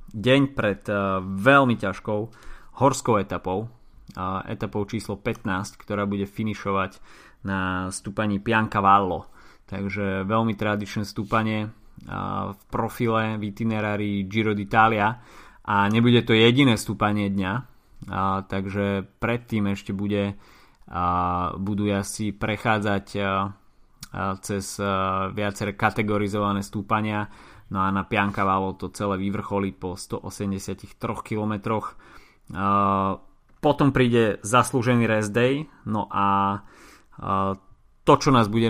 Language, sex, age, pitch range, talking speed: Slovak, male, 20-39, 100-115 Hz, 100 wpm